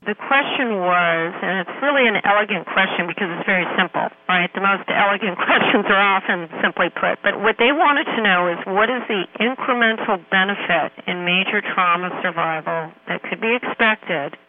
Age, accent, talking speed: 50-69, American, 175 wpm